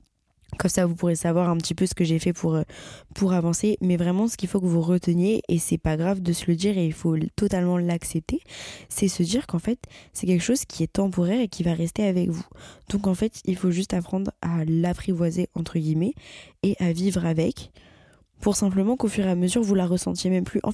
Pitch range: 170-200 Hz